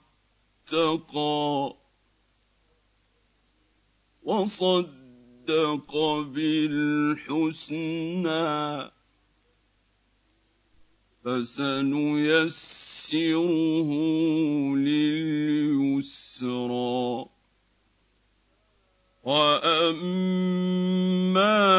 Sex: male